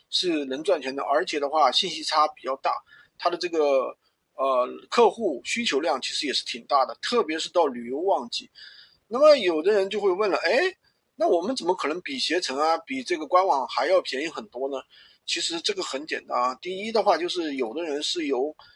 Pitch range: 180-295 Hz